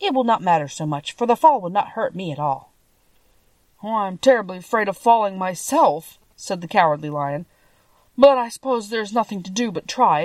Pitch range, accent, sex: 155-235 Hz, American, female